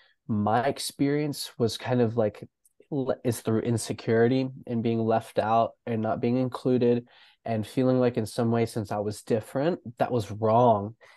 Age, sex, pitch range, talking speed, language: 20-39, male, 115-140 Hz, 160 wpm, English